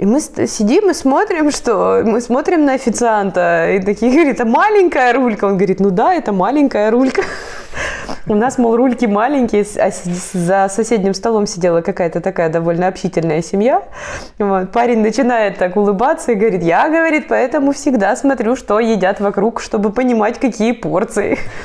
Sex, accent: female, native